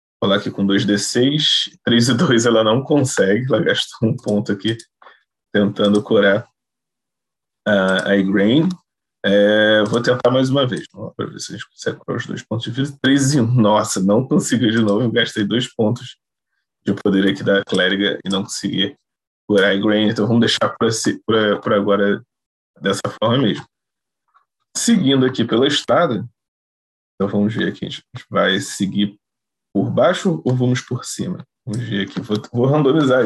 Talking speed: 165 wpm